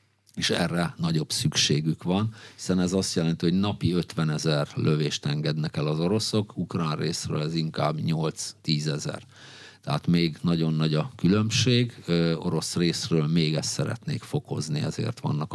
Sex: male